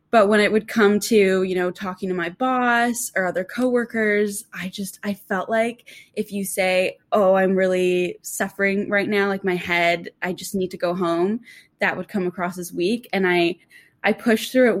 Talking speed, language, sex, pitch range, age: 205 wpm, English, female, 190-240 Hz, 20-39